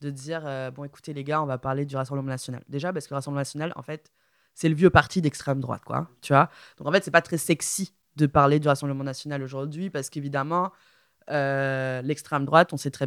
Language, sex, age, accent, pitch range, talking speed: French, female, 20-39, French, 140-170 Hz, 235 wpm